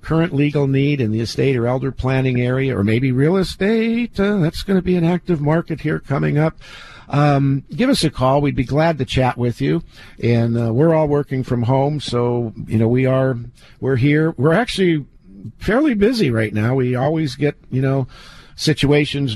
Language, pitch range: English, 125-160 Hz